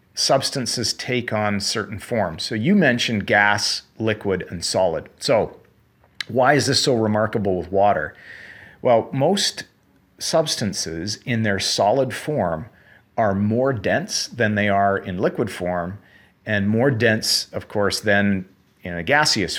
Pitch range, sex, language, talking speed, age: 100-125 Hz, male, English, 140 wpm, 40-59